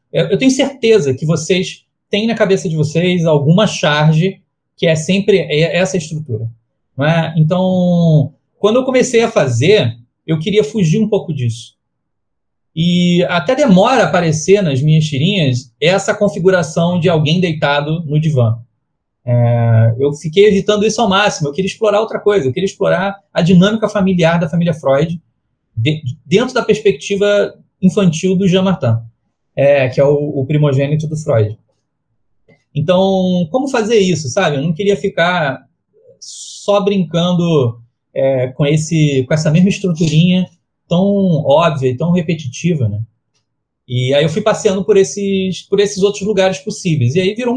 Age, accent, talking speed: 30-49, Brazilian, 155 wpm